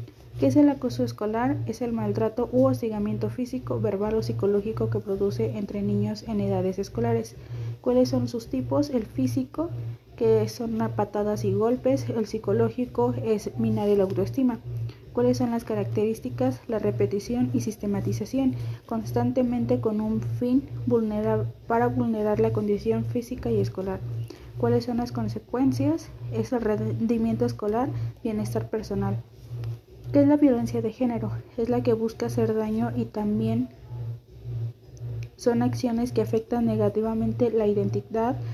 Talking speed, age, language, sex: 135 wpm, 30-49, Spanish, female